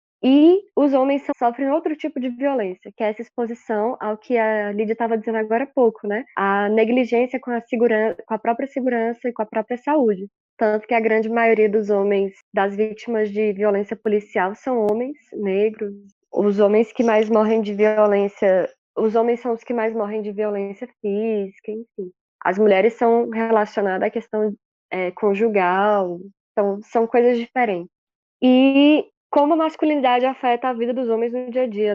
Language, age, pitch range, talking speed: Portuguese, 20-39, 215-250 Hz, 170 wpm